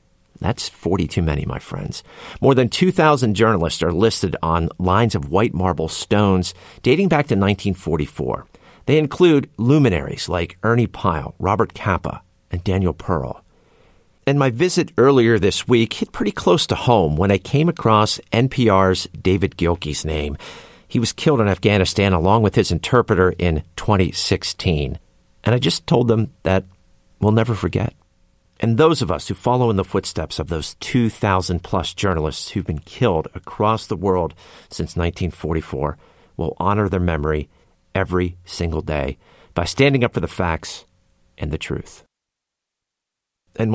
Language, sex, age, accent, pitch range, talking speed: English, male, 50-69, American, 85-115 Hz, 150 wpm